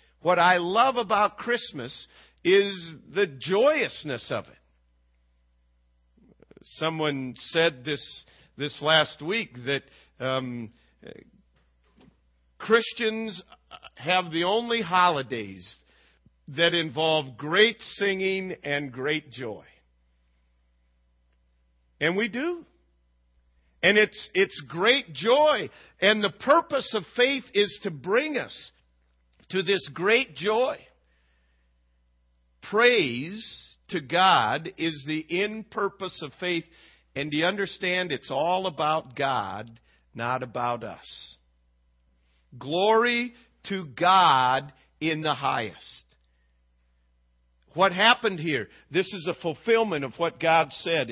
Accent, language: American, English